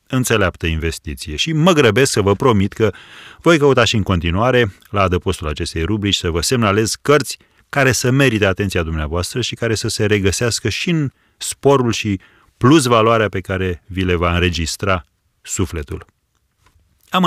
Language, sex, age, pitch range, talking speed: Romanian, male, 30-49, 85-120 Hz, 160 wpm